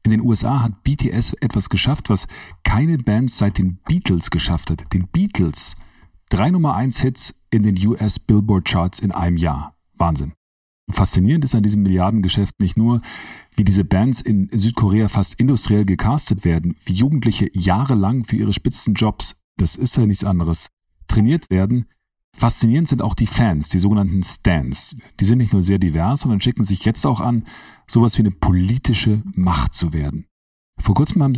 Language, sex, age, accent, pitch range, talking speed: German, male, 40-59, German, 95-120 Hz, 165 wpm